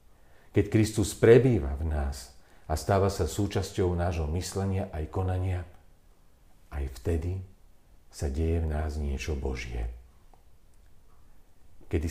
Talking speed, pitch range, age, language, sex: 110 wpm, 80-100 Hz, 50-69, Slovak, male